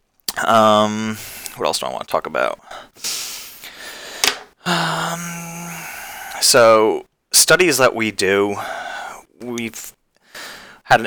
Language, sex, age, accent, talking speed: English, male, 20-39, American, 90 wpm